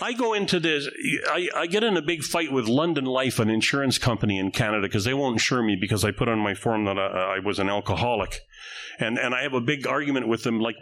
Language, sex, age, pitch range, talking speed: English, male, 40-59, 115-155 Hz, 255 wpm